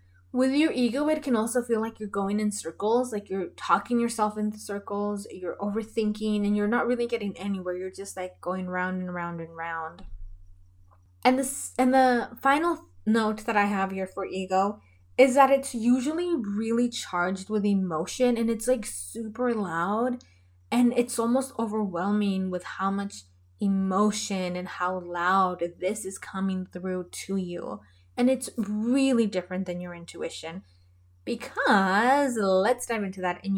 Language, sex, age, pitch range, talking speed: English, female, 20-39, 180-235 Hz, 160 wpm